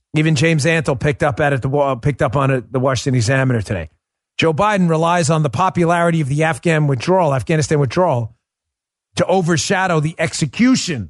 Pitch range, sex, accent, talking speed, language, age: 135-205 Hz, male, American, 170 wpm, English, 40-59